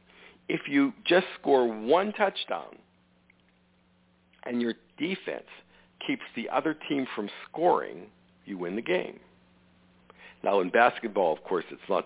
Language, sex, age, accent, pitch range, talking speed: English, male, 60-79, American, 95-150 Hz, 130 wpm